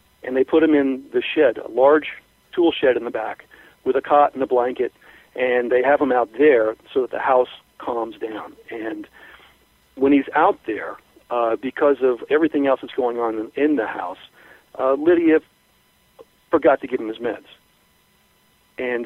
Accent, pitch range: American, 120-150 Hz